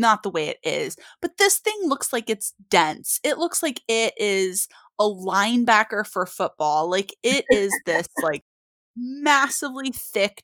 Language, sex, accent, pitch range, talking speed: English, female, American, 180-285 Hz, 160 wpm